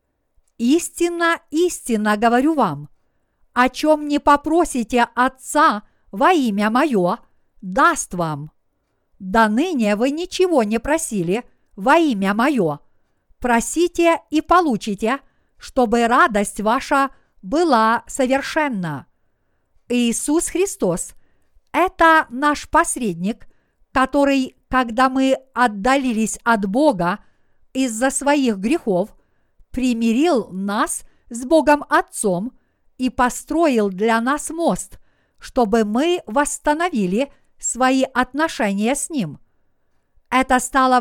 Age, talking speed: 50-69, 95 wpm